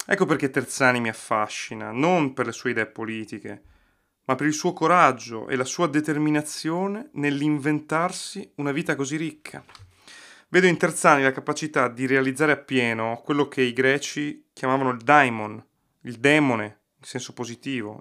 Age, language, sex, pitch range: 30-49, Italian, male, 115-155 Hz